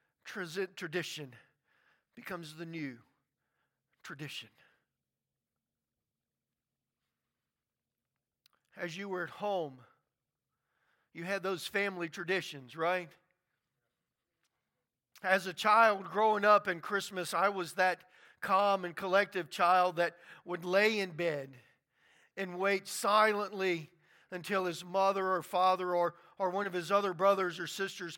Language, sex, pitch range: English, male, 175-215 Hz